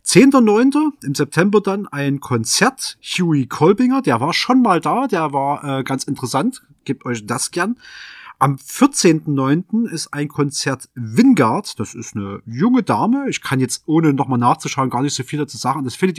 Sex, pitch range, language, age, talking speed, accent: male, 130-170 Hz, German, 30-49, 175 wpm, German